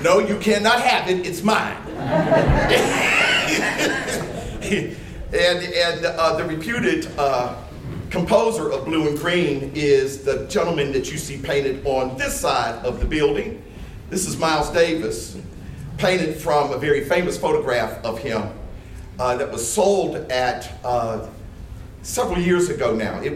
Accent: American